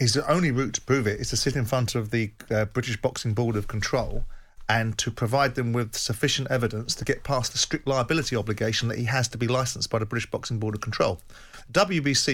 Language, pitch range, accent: English, 110-130 Hz, British